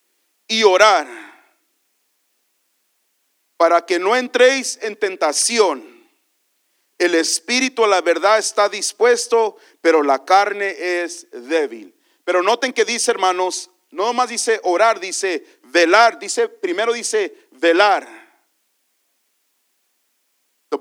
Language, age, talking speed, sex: English, 40-59, 100 wpm, male